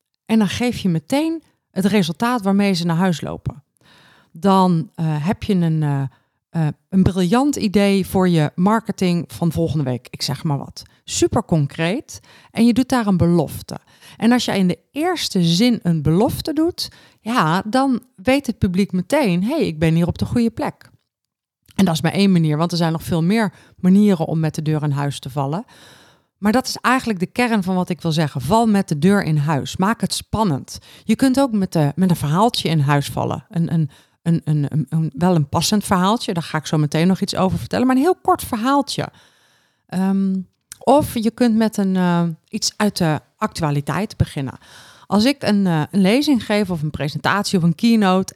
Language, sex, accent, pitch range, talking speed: Dutch, female, Dutch, 160-220 Hz, 205 wpm